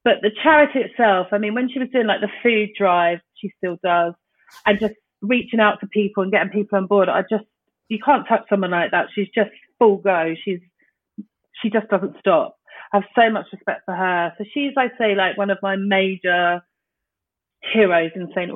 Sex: female